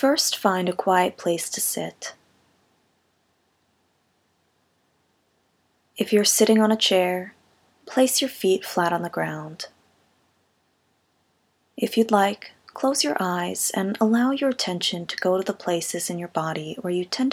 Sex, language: female, English